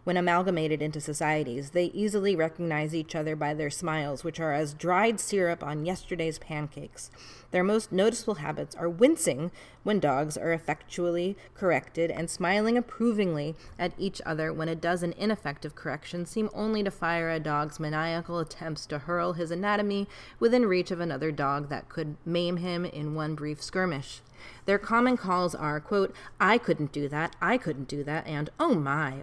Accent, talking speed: American, 170 wpm